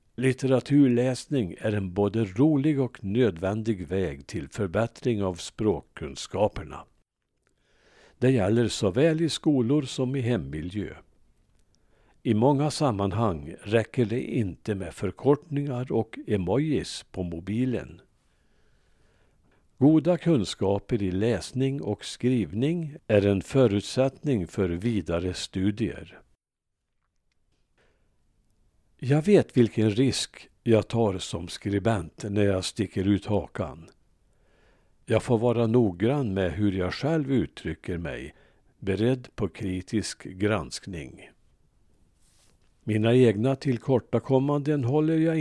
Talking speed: 100 wpm